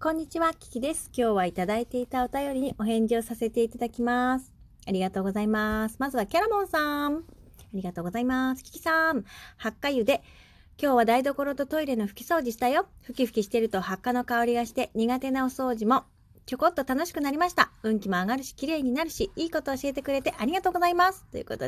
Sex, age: female, 30-49